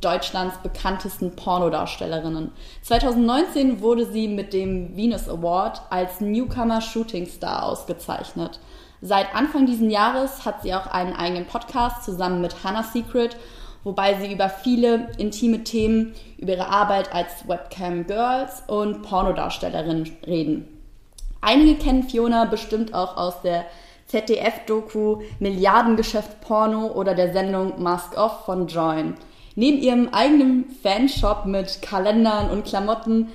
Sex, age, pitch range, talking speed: female, 20-39, 190-230 Hz, 125 wpm